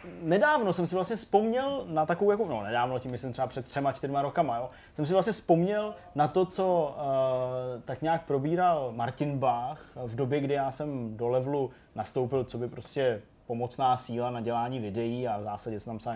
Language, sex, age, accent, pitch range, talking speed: Czech, male, 20-39, native, 125-150 Hz, 200 wpm